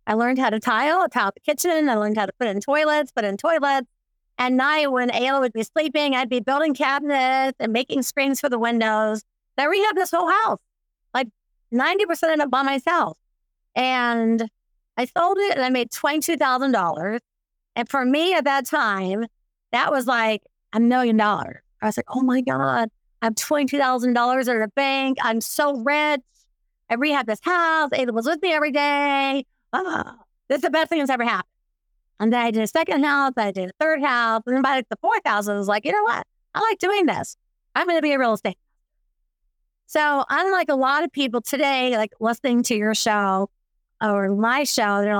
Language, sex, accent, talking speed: English, female, American, 200 wpm